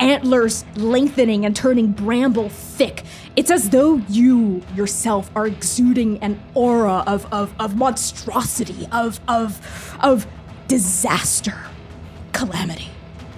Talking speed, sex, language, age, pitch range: 110 wpm, female, English, 20-39, 205-265 Hz